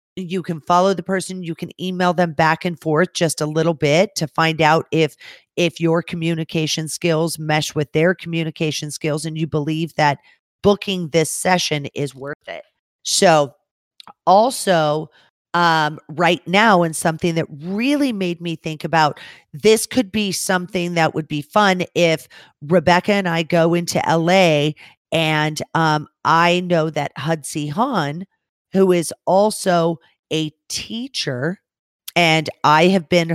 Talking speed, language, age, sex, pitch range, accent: 150 wpm, English, 40-59, female, 155-185 Hz, American